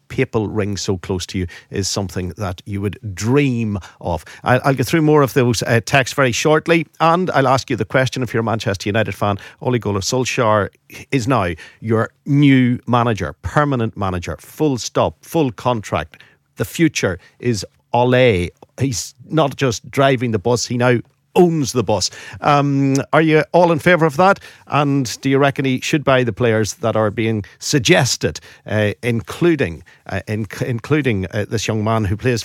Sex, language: male, English